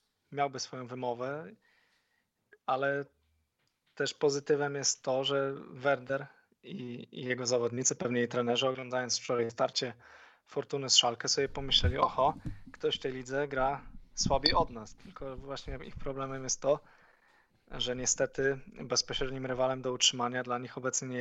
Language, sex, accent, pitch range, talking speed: Polish, male, native, 125-140 Hz, 140 wpm